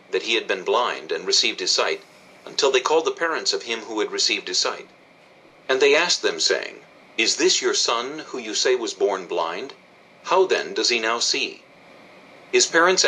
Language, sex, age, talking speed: English, male, 50-69, 200 wpm